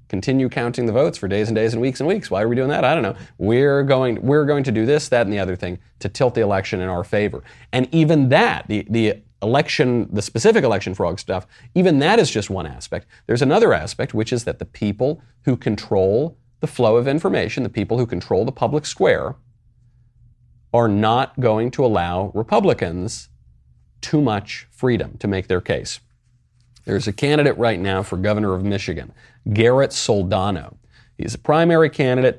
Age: 40-59